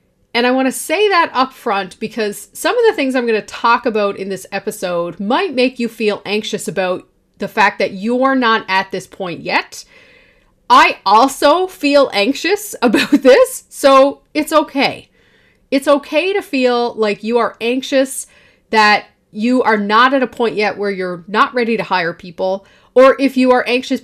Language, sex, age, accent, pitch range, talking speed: English, female, 30-49, American, 200-265 Hz, 175 wpm